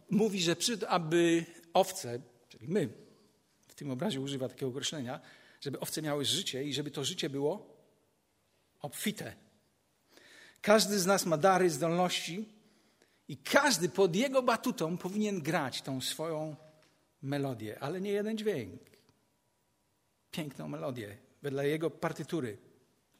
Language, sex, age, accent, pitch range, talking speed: Polish, male, 50-69, native, 135-195 Hz, 125 wpm